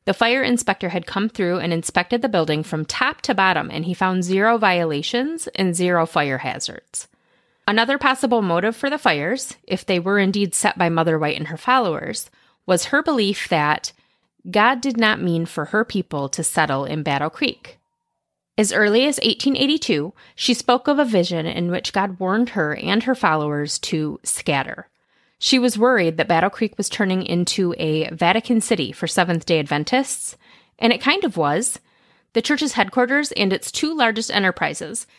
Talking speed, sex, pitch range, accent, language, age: 175 wpm, female, 170-235 Hz, American, English, 30-49